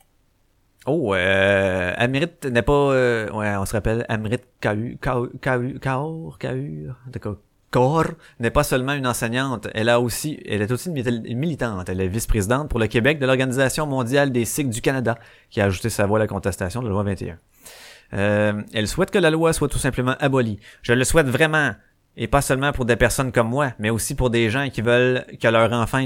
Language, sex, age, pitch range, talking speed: French, male, 30-49, 105-140 Hz, 200 wpm